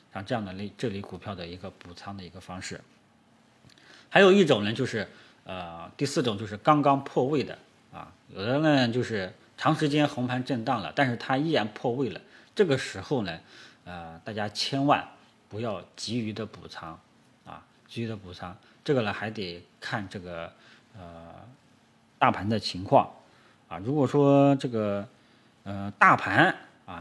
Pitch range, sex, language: 95-130 Hz, male, Chinese